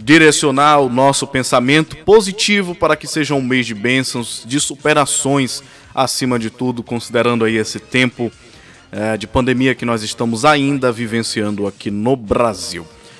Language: Portuguese